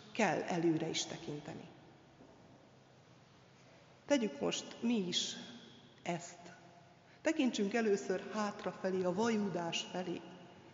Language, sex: Hungarian, female